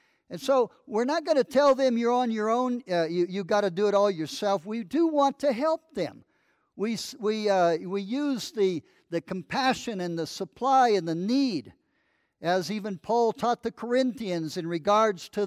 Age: 60-79